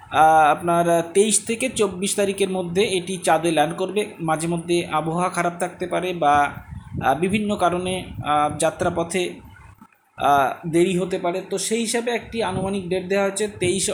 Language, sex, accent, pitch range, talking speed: Bengali, male, native, 160-210 Hz, 140 wpm